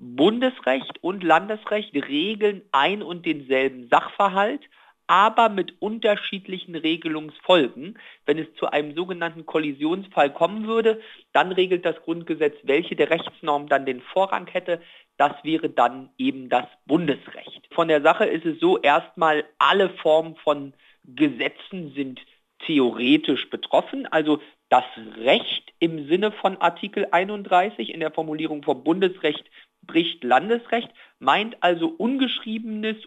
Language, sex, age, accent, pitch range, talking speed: German, male, 50-69, German, 155-210 Hz, 125 wpm